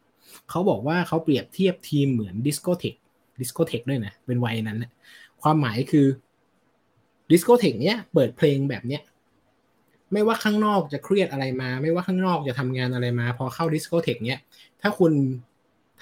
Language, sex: Thai, male